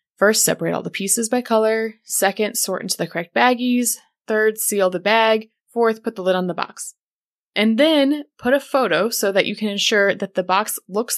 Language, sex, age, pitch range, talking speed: English, female, 20-39, 180-230 Hz, 205 wpm